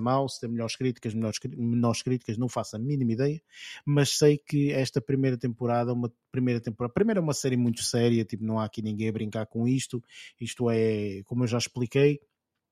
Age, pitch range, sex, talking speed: 20-39, 120-145 Hz, male, 205 wpm